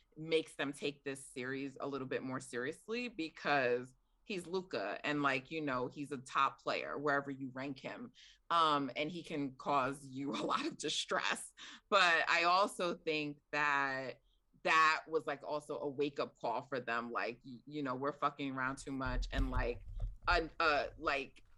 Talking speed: 170 wpm